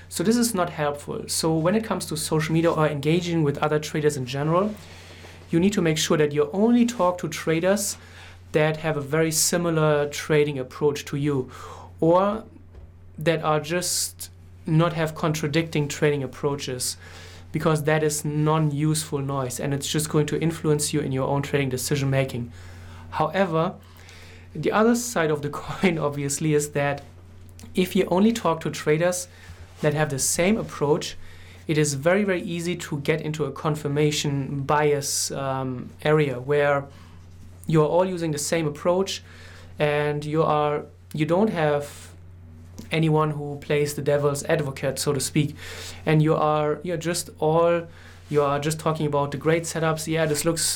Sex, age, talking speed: male, 30-49, 165 wpm